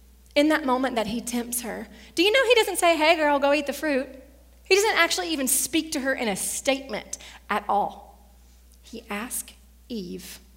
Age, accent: 30-49, American